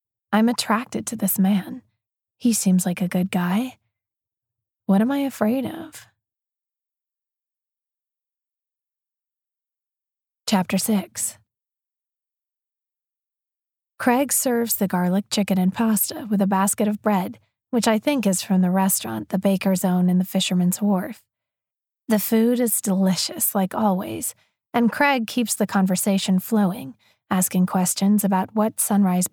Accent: American